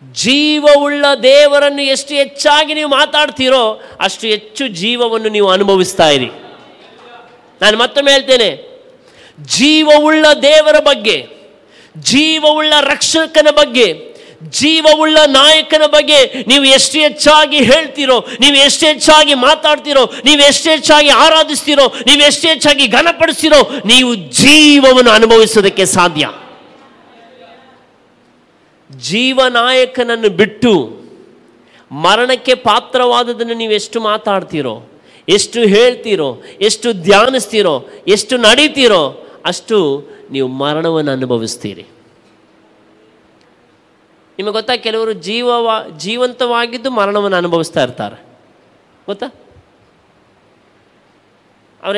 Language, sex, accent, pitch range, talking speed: Kannada, male, native, 200-295 Hz, 80 wpm